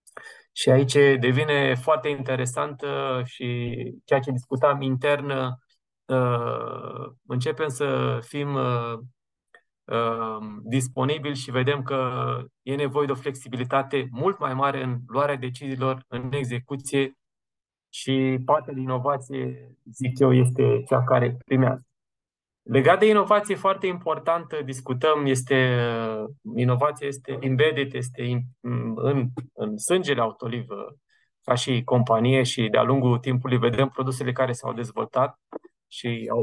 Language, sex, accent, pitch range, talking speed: Romanian, male, native, 125-145 Hz, 115 wpm